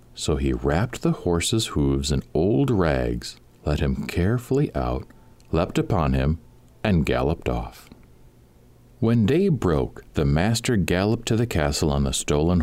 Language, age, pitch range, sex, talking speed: English, 50-69, 75-115 Hz, male, 145 wpm